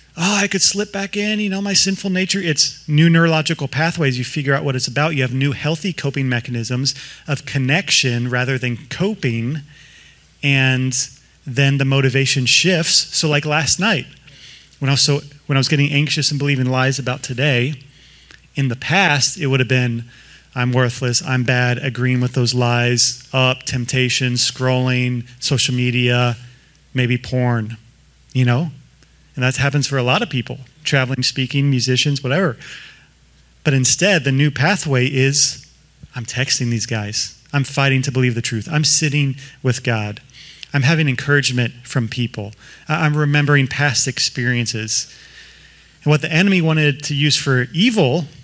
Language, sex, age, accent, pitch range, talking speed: English, male, 30-49, American, 125-150 Hz, 160 wpm